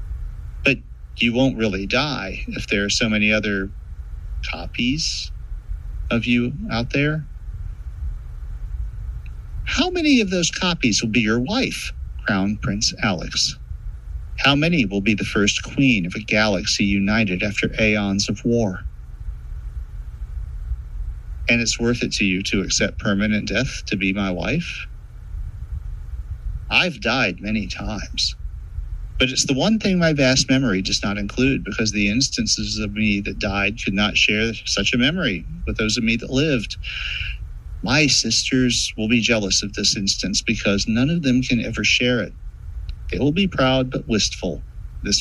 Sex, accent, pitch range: male, American, 90-120 Hz